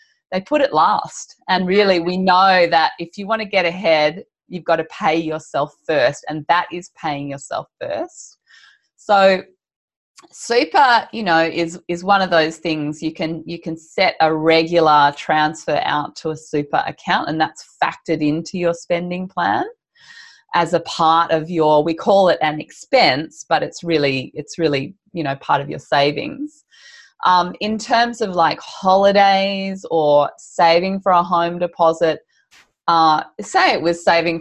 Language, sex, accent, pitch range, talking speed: English, female, Australian, 150-185 Hz, 165 wpm